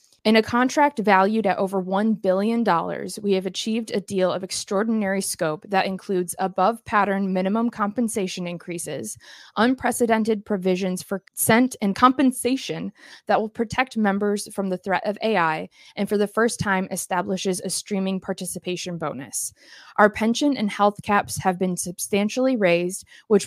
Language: English